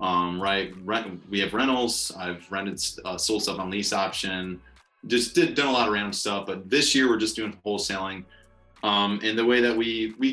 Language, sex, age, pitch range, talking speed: English, male, 30-49, 90-105 Hz, 205 wpm